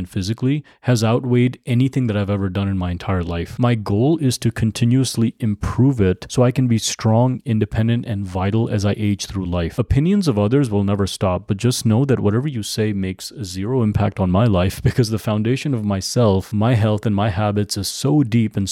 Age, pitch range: 30-49, 100-125 Hz